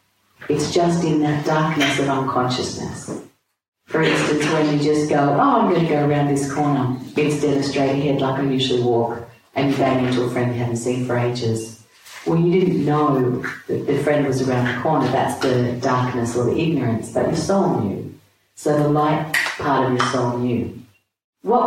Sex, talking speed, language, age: female, 195 wpm, English, 40-59